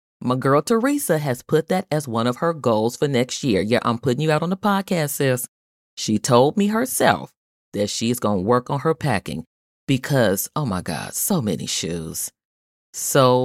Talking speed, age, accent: 190 wpm, 30-49, American